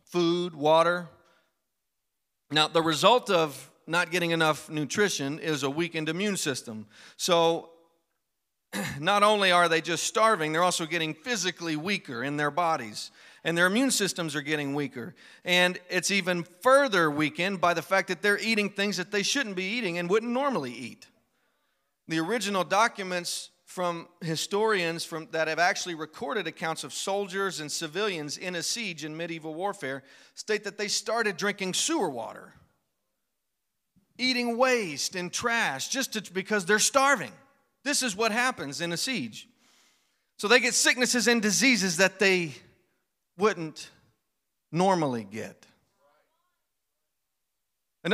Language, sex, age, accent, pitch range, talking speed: English, male, 40-59, American, 160-215 Hz, 140 wpm